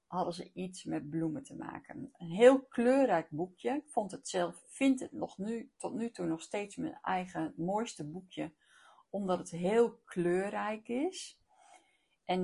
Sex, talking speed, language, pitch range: female, 140 wpm, Dutch, 160-215 Hz